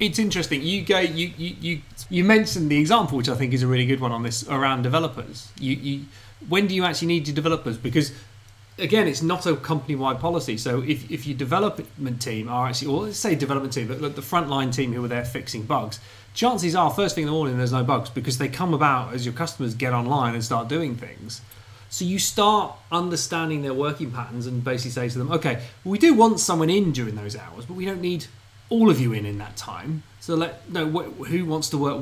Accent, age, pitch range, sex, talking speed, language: British, 30-49, 120-165 Hz, male, 240 wpm, English